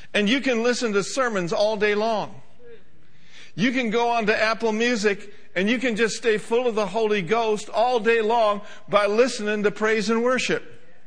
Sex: male